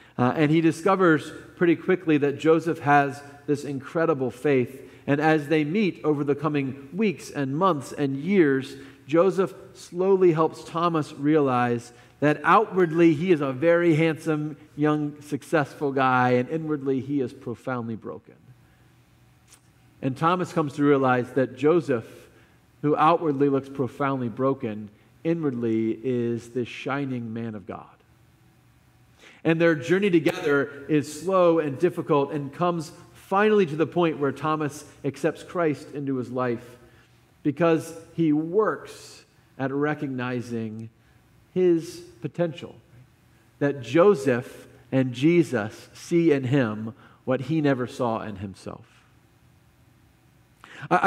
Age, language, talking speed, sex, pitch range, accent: 40-59, English, 125 wpm, male, 125-165 Hz, American